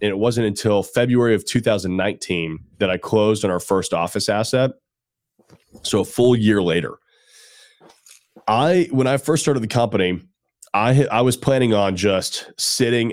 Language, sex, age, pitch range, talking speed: English, male, 30-49, 95-120 Hz, 155 wpm